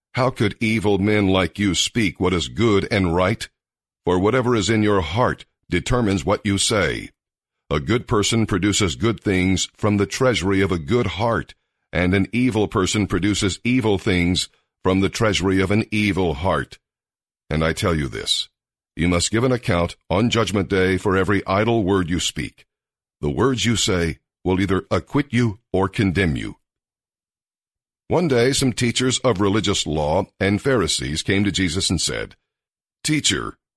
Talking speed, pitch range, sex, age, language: 165 wpm, 95-110 Hz, male, 50-69, English